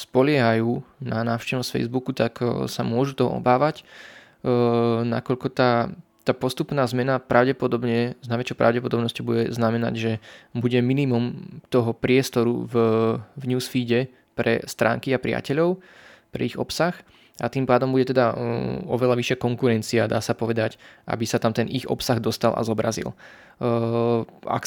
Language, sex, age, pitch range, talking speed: Slovak, male, 20-39, 115-125 Hz, 140 wpm